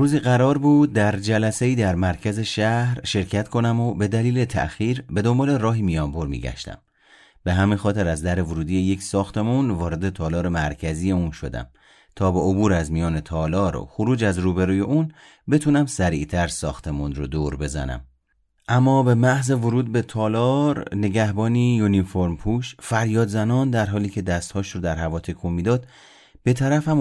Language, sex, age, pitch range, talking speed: Persian, male, 30-49, 85-125 Hz, 160 wpm